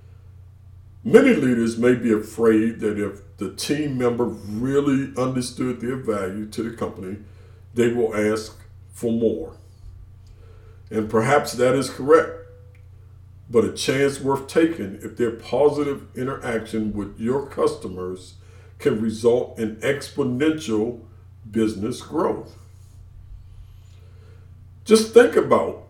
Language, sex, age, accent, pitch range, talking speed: English, male, 50-69, American, 95-125 Hz, 110 wpm